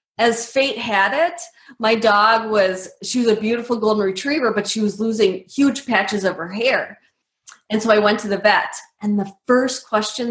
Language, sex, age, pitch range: English, female, 20-39, 190-245 Hz